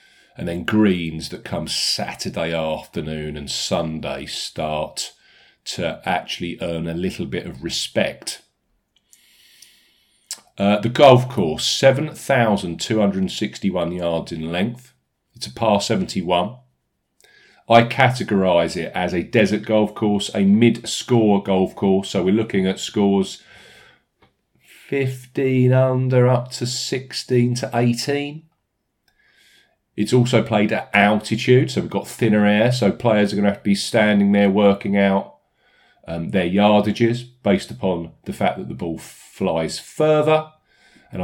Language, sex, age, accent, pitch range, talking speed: English, male, 40-59, British, 90-120 Hz, 130 wpm